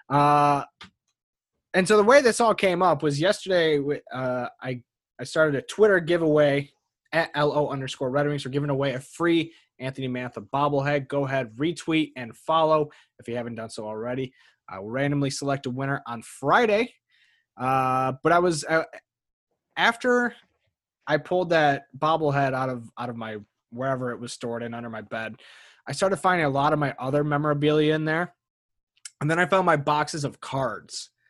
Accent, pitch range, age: American, 120-150 Hz, 20-39